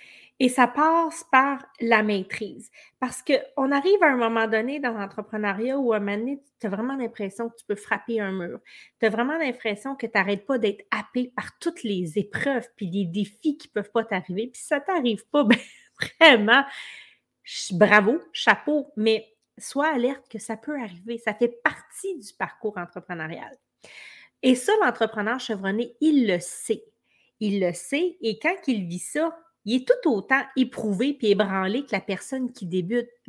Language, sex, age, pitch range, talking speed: French, female, 30-49, 205-270 Hz, 180 wpm